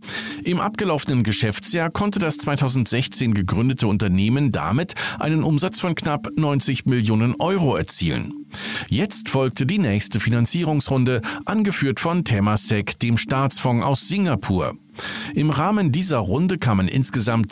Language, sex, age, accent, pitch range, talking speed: German, male, 50-69, German, 110-150 Hz, 120 wpm